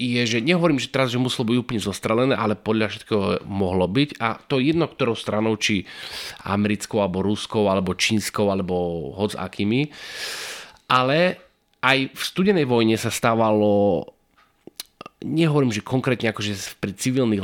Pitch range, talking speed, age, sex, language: 105-135 Hz, 150 wpm, 20-39, male, Slovak